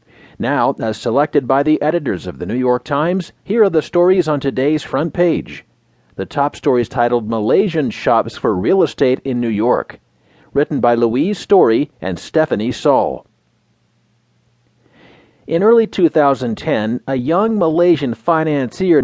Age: 40-59